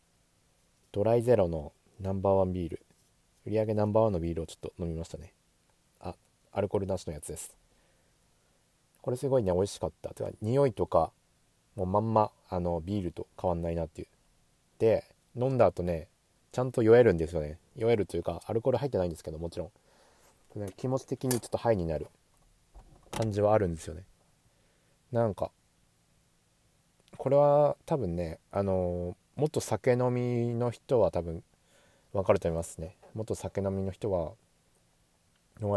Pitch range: 85-110 Hz